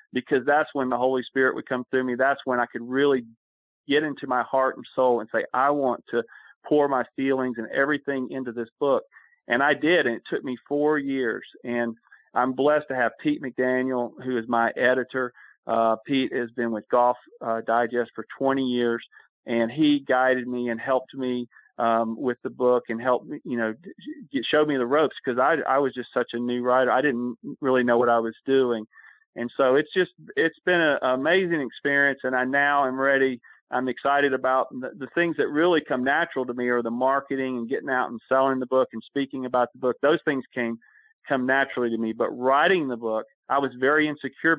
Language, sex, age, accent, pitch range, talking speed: English, male, 40-59, American, 120-135 Hz, 215 wpm